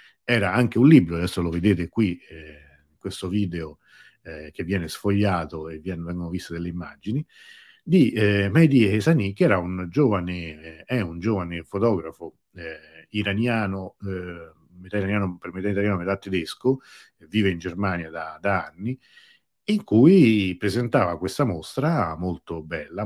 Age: 50-69